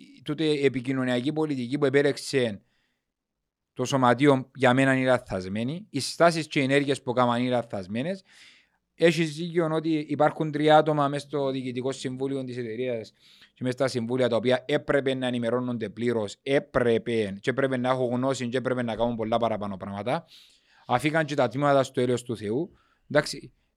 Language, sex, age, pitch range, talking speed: Greek, male, 30-49, 115-145 Hz, 160 wpm